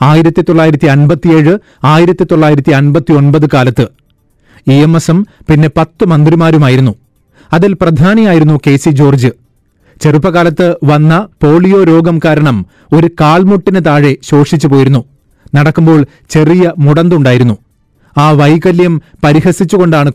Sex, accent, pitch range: male, native, 140-170 Hz